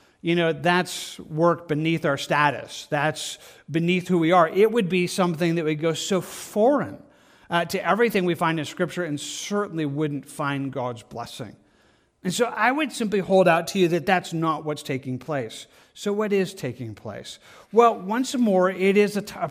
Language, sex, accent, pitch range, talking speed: English, male, American, 160-185 Hz, 185 wpm